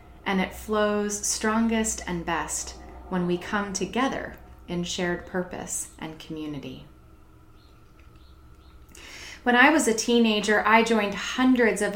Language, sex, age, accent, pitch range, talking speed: English, female, 30-49, American, 180-225 Hz, 120 wpm